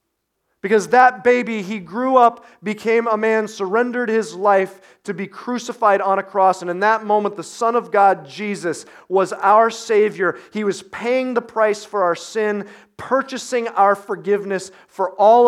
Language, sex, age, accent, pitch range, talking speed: English, male, 30-49, American, 165-220 Hz, 165 wpm